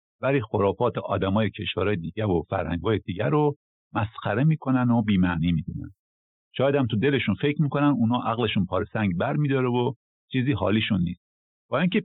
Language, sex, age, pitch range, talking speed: Persian, male, 50-69, 105-145 Hz, 180 wpm